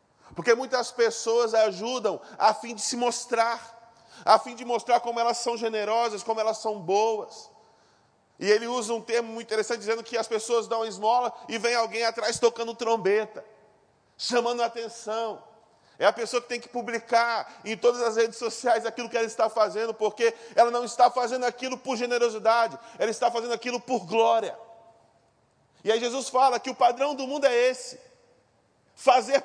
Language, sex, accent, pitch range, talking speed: Portuguese, male, Brazilian, 220-245 Hz, 175 wpm